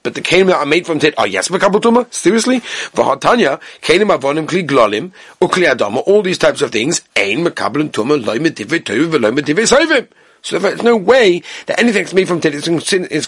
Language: English